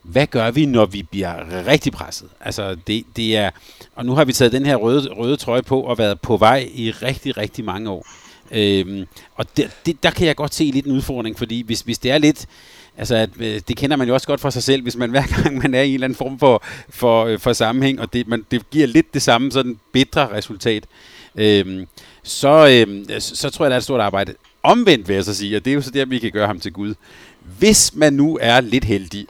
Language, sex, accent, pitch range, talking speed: Danish, male, native, 105-135 Hz, 255 wpm